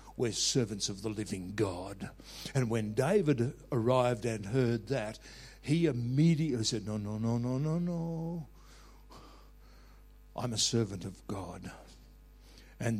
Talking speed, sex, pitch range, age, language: 130 wpm, male, 115-145 Hz, 60-79, English